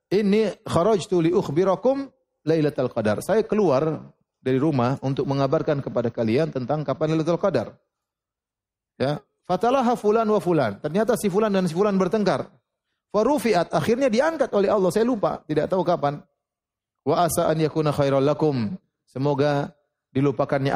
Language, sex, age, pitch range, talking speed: Indonesian, male, 30-49, 125-175 Hz, 125 wpm